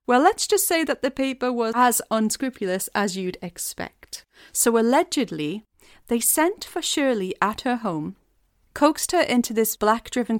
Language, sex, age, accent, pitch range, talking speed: English, female, 30-49, British, 185-250 Hz, 155 wpm